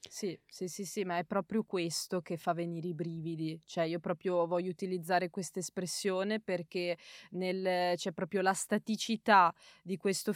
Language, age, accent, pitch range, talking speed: Italian, 20-39, native, 180-205 Hz, 160 wpm